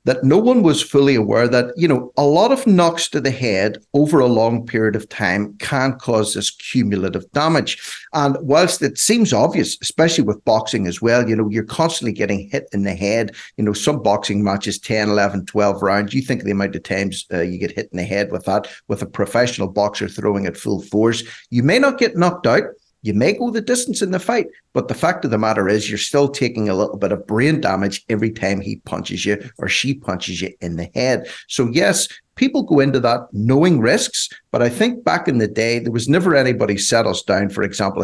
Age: 50-69